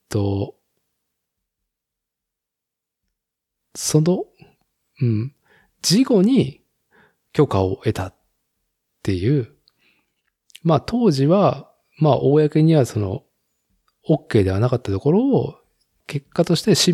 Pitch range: 100-150 Hz